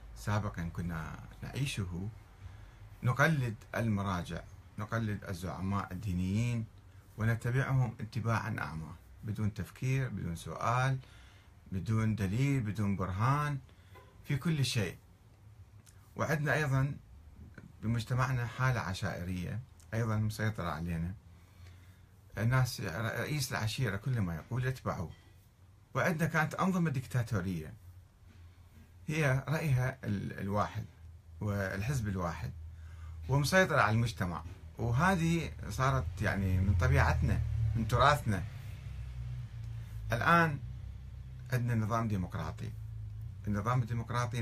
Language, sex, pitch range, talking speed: Arabic, male, 95-120 Hz, 85 wpm